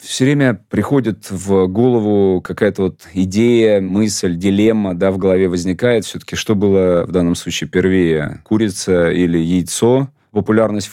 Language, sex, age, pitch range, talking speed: Russian, male, 30-49, 90-105 Hz, 135 wpm